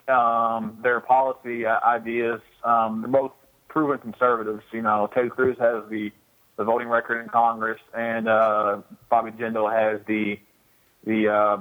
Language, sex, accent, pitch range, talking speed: English, male, American, 115-130 Hz, 145 wpm